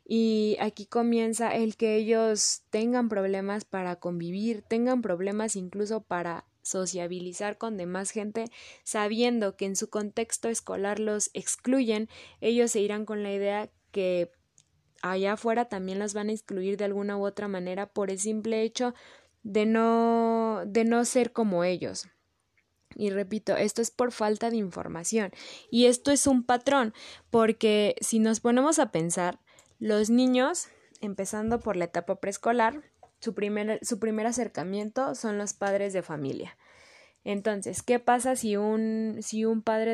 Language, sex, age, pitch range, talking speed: English, female, 20-39, 200-230 Hz, 150 wpm